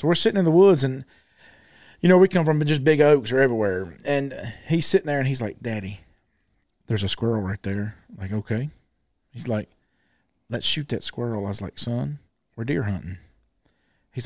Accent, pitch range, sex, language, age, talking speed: American, 110-155 Hz, male, English, 40-59, 200 wpm